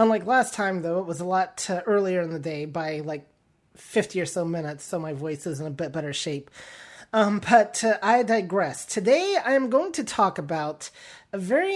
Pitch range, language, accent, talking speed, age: 185-245 Hz, English, American, 205 wpm, 30-49